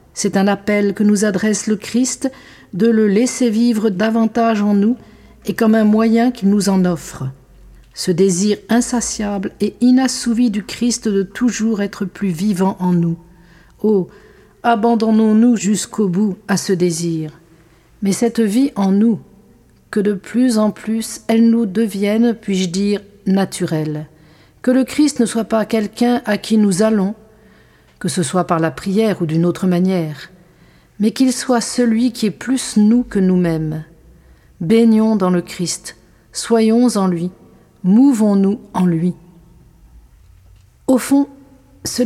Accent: French